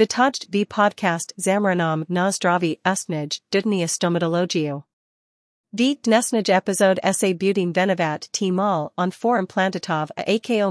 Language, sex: Slovak, female